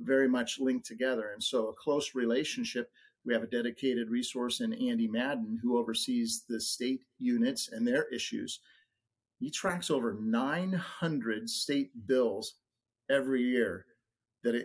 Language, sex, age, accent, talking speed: English, male, 50-69, American, 140 wpm